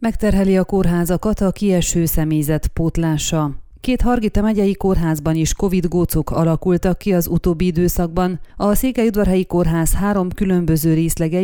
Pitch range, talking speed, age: 165-195 Hz, 135 wpm, 30-49